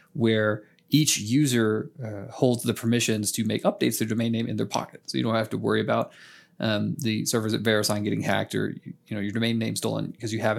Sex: male